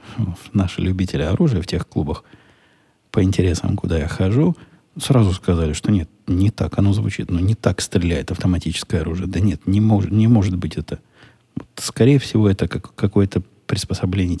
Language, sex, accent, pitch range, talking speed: Russian, male, native, 90-110 Hz, 165 wpm